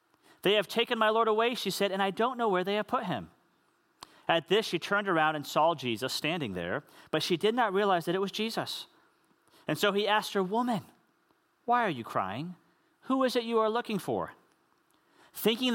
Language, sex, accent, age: English, male, American, 40-59